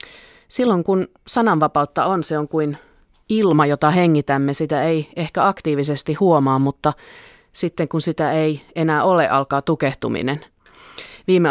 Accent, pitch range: native, 145-180 Hz